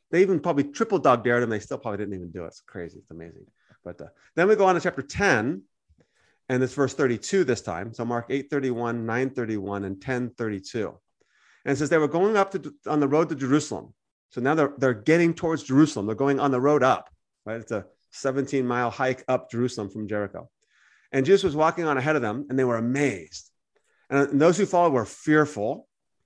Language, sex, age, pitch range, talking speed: English, male, 30-49, 120-165 Hz, 215 wpm